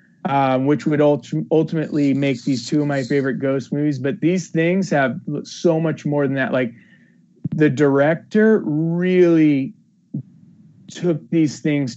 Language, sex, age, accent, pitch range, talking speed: English, male, 30-49, American, 125-155 Hz, 145 wpm